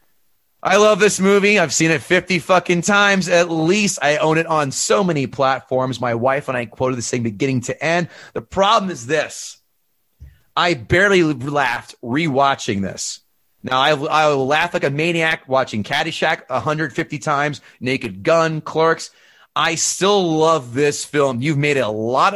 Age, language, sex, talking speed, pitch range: 30-49, English, male, 165 wpm, 130-165 Hz